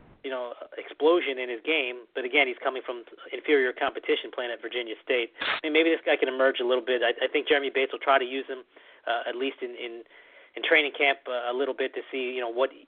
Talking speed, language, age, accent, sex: 245 wpm, English, 30-49, American, male